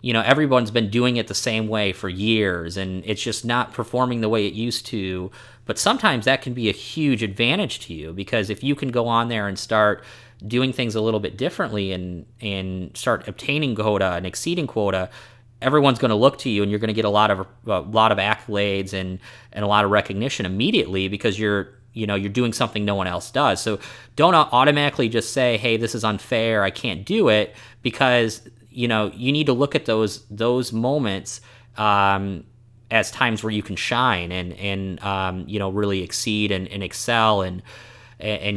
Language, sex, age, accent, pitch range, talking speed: English, male, 30-49, American, 100-120 Hz, 205 wpm